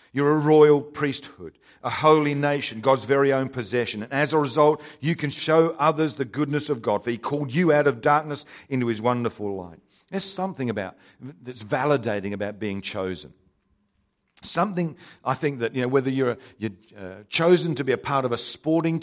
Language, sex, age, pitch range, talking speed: English, male, 50-69, 120-155 Hz, 185 wpm